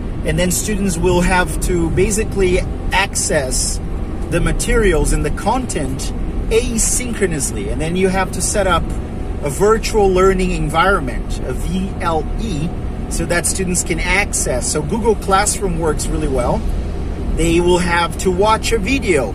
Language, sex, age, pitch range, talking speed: English, male, 40-59, 160-195 Hz, 140 wpm